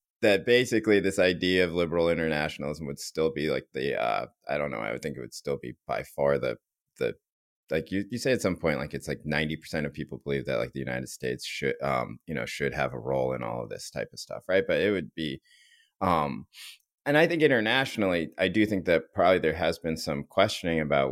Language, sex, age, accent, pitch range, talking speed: English, male, 30-49, American, 70-100 Hz, 235 wpm